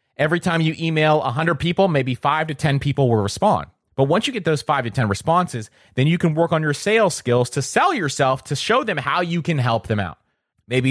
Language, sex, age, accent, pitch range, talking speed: English, male, 30-49, American, 130-175 Hz, 235 wpm